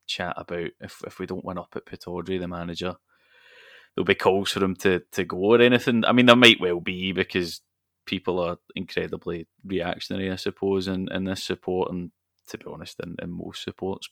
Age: 20-39